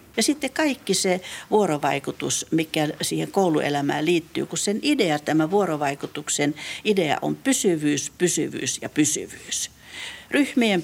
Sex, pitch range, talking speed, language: female, 160-215 Hz, 115 wpm, Finnish